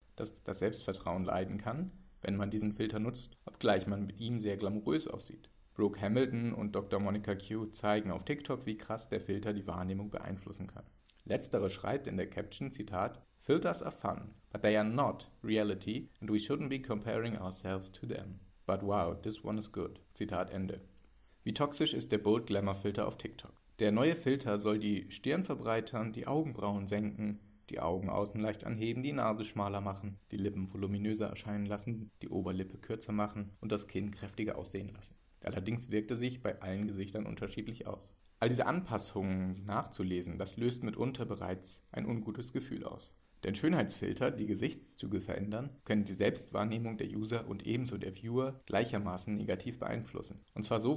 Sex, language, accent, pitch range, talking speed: male, German, German, 100-115 Hz, 175 wpm